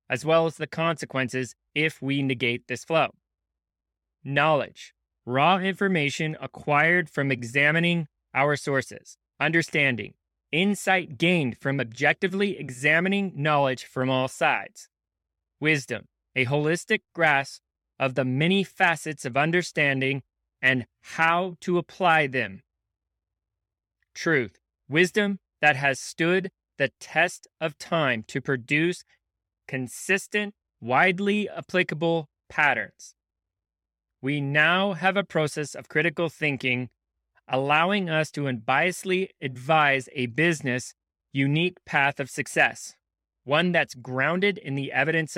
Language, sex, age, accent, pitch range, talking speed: English, male, 20-39, American, 130-170 Hz, 110 wpm